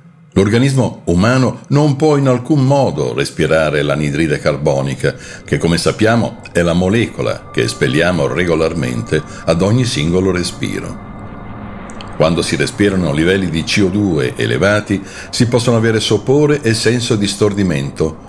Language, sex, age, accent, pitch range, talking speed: Italian, male, 60-79, native, 85-125 Hz, 125 wpm